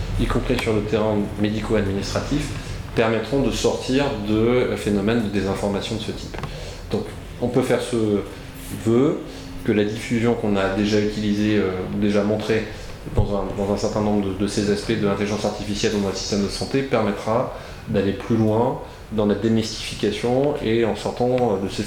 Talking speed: 165 wpm